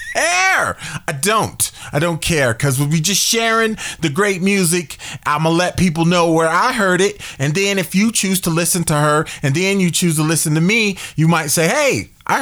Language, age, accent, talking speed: English, 30-49, American, 220 wpm